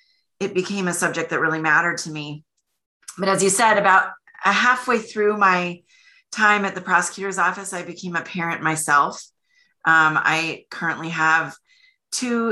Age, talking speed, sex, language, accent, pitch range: 30-49, 155 wpm, female, English, American, 160-200 Hz